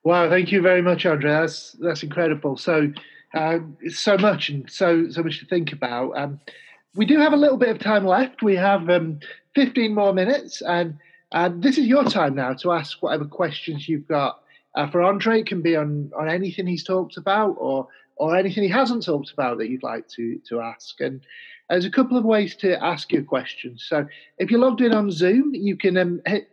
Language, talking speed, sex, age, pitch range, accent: English, 215 wpm, male, 30-49, 150-200 Hz, British